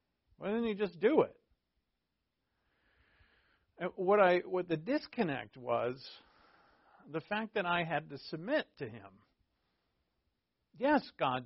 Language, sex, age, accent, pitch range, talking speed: English, male, 50-69, American, 115-190 Hz, 120 wpm